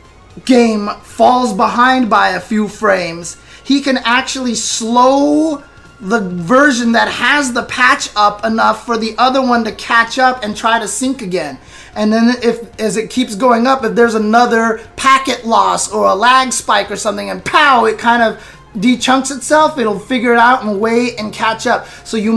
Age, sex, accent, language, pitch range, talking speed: 20-39, male, American, English, 205-250 Hz, 180 wpm